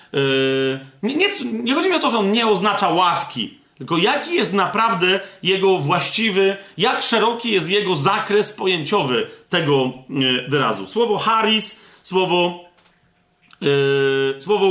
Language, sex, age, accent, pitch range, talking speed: Polish, male, 40-59, native, 170-225 Hz, 120 wpm